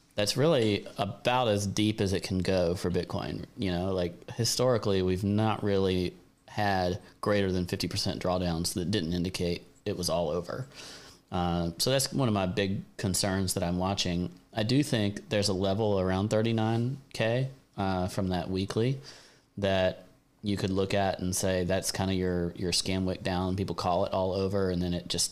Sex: male